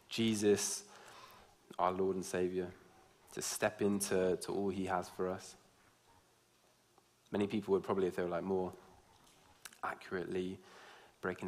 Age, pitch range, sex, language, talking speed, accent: 20-39, 90-100 Hz, male, English, 130 wpm, British